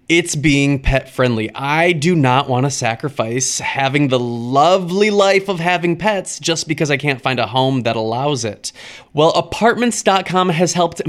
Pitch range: 135-190 Hz